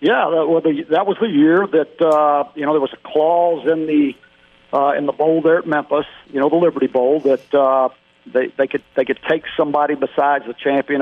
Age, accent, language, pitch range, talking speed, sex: 50-69, American, English, 135-170 Hz, 225 wpm, male